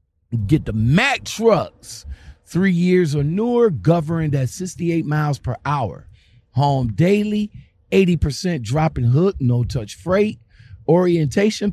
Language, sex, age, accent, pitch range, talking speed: English, male, 50-69, American, 110-175 Hz, 120 wpm